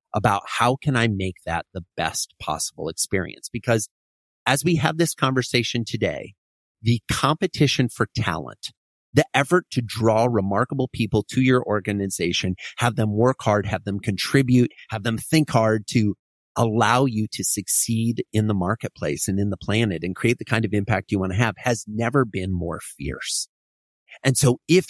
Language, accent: English, American